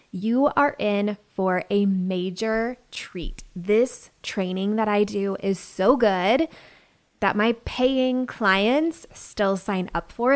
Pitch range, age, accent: 195-255 Hz, 20-39, American